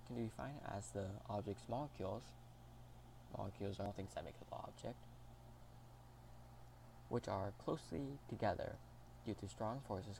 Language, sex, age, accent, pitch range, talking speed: English, male, 20-39, American, 105-120 Hz, 130 wpm